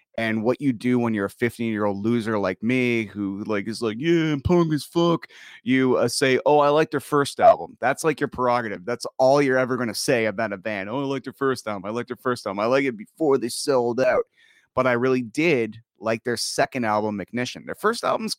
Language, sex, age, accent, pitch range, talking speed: English, male, 30-49, American, 115-145 Hz, 240 wpm